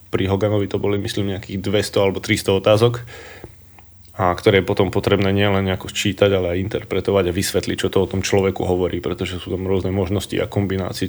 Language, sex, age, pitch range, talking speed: Slovak, male, 20-39, 90-105 Hz, 195 wpm